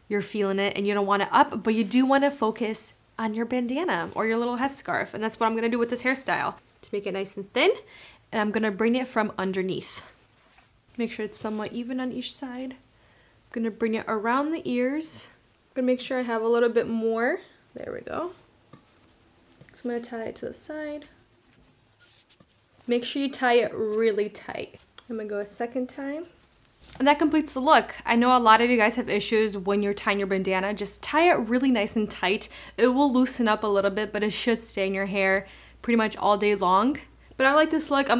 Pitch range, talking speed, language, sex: 205-255 Hz, 235 wpm, French, female